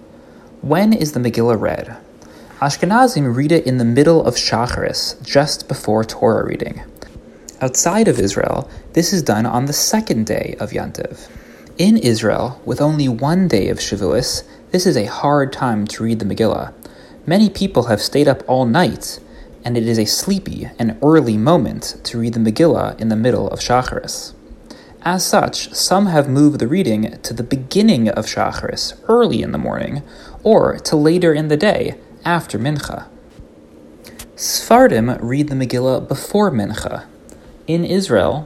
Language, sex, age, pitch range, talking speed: English, male, 30-49, 115-170 Hz, 160 wpm